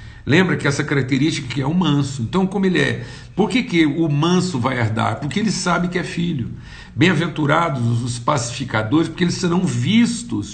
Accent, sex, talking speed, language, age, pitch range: Brazilian, male, 180 wpm, Portuguese, 60-79, 135-180 Hz